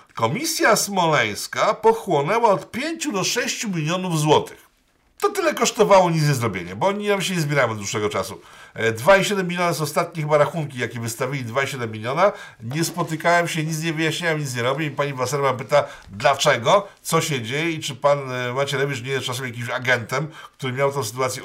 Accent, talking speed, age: native, 175 wpm, 50-69